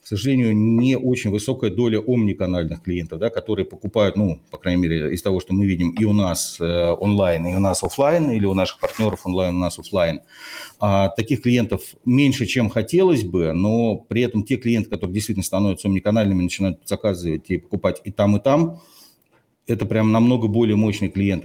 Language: Russian